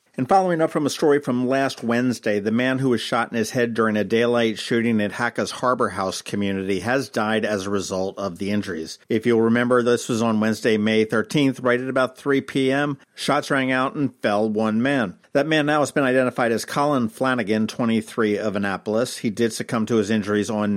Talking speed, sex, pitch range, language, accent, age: 215 wpm, male, 110-135 Hz, English, American, 50-69